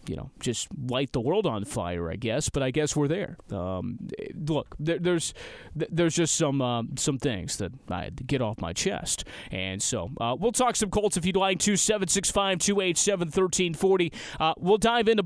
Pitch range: 130-190 Hz